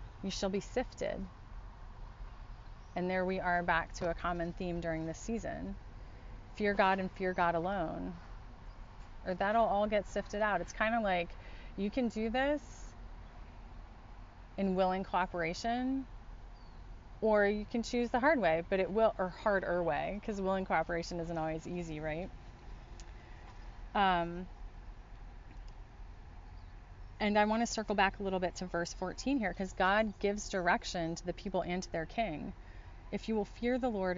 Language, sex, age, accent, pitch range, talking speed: English, female, 30-49, American, 145-195 Hz, 160 wpm